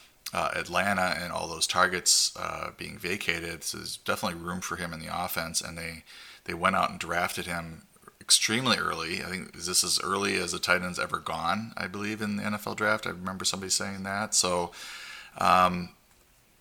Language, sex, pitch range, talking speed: English, male, 85-95 Hz, 190 wpm